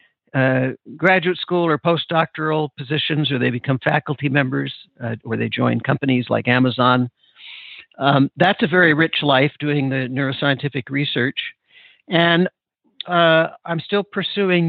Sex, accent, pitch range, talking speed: male, American, 135-180 Hz, 135 wpm